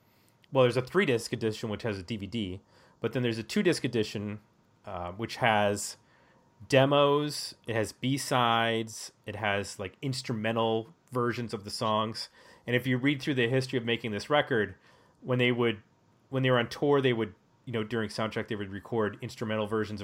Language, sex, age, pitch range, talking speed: English, male, 30-49, 105-125 Hz, 180 wpm